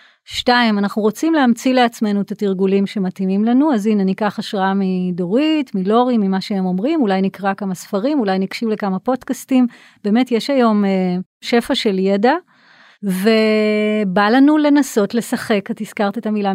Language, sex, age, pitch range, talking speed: Hebrew, female, 30-49, 195-245 Hz, 150 wpm